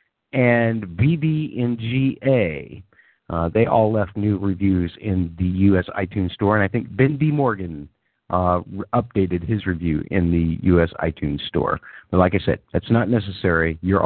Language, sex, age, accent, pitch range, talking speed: English, male, 50-69, American, 90-115 Hz, 160 wpm